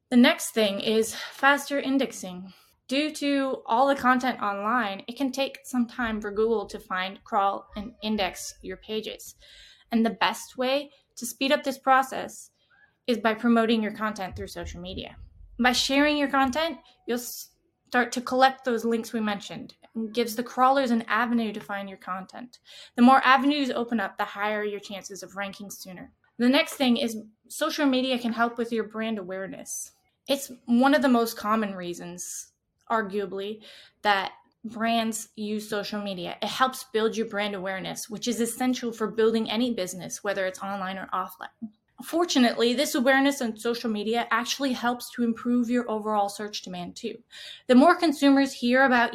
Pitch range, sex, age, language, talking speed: 210-260 Hz, female, 20-39, English, 170 wpm